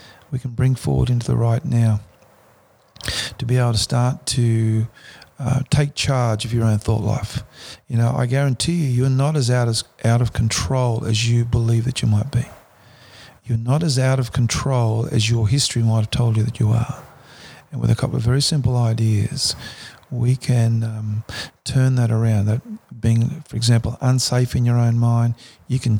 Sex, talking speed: male, 190 wpm